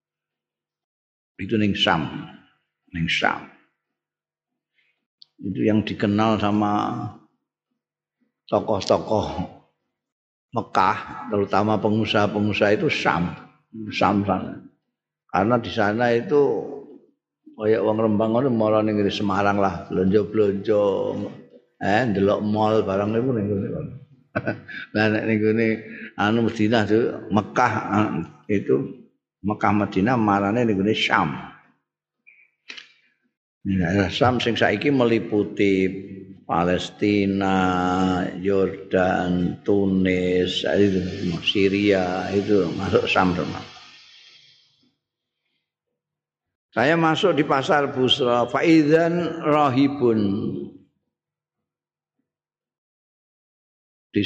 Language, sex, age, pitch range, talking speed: Indonesian, male, 50-69, 95-115 Hz, 70 wpm